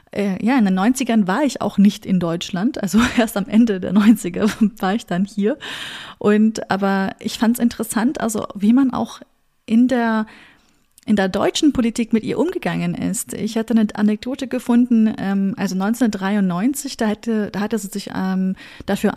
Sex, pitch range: female, 200-235 Hz